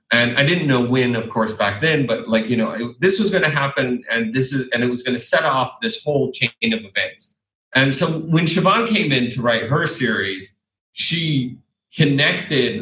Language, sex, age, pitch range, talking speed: English, male, 40-59, 115-150 Hz, 215 wpm